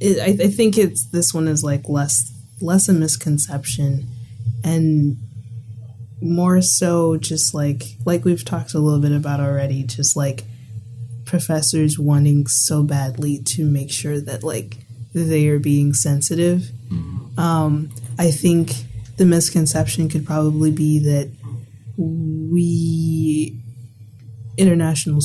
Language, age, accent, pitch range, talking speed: English, 20-39, American, 120-175 Hz, 120 wpm